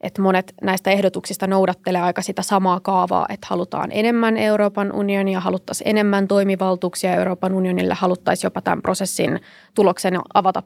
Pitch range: 185-200 Hz